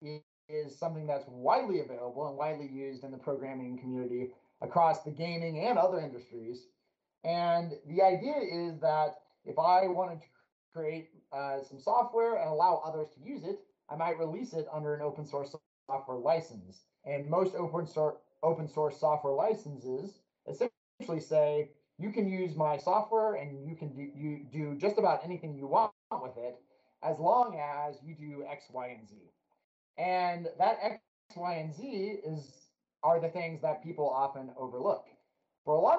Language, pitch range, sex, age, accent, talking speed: English, 140-175 Hz, male, 30-49, American, 170 wpm